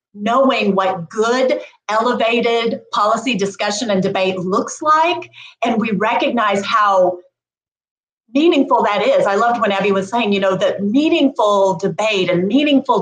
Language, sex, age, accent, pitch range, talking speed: English, female, 30-49, American, 200-270 Hz, 140 wpm